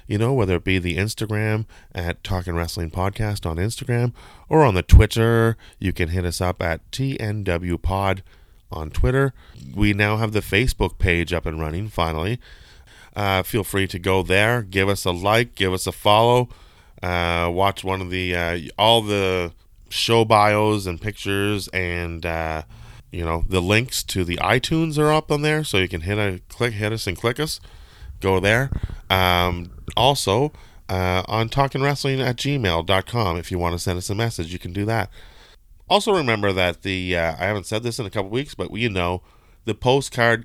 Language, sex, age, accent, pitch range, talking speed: English, male, 20-39, American, 90-110 Hz, 190 wpm